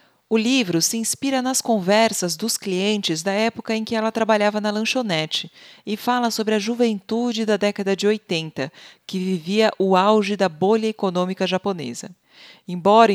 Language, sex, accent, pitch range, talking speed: Portuguese, female, Brazilian, 180-225 Hz, 155 wpm